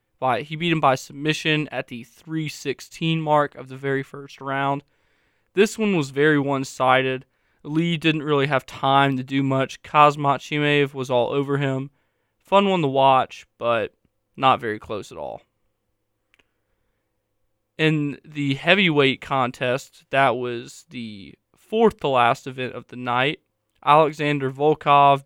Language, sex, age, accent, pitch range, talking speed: English, male, 20-39, American, 130-150 Hz, 135 wpm